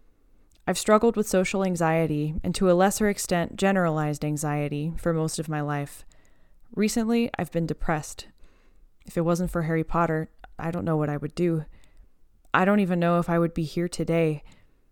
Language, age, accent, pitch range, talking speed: English, 20-39, American, 155-180 Hz, 175 wpm